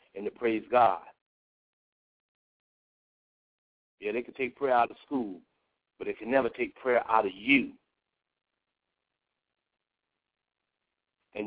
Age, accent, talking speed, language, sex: 60-79, American, 115 wpm, English, male